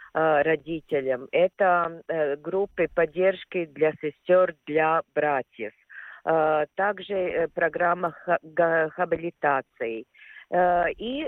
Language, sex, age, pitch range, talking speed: Russian, female, 40-59, 155-200 Hz, 65 wpm